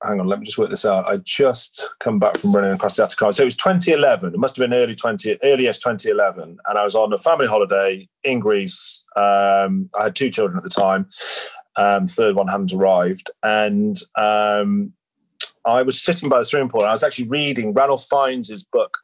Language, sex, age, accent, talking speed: English, male, 30-49, British, 215 wpm